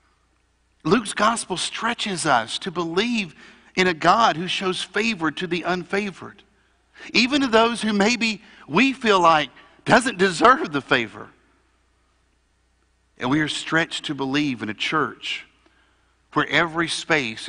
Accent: American